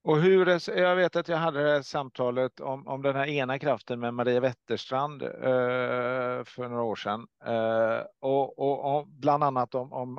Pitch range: 110-135 Hz